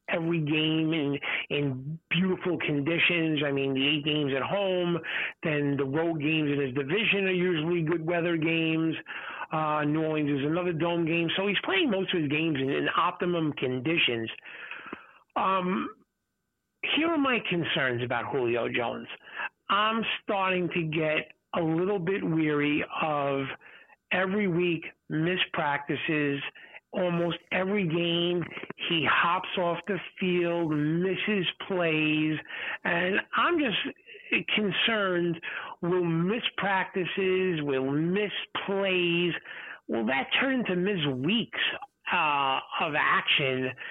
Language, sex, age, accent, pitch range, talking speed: English, male, 50-69, American, 150-185 Hz, 125 wpm